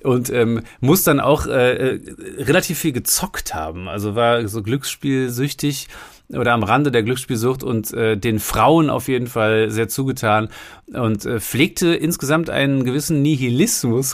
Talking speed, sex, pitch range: 150 wpm, male, 110-135 Hz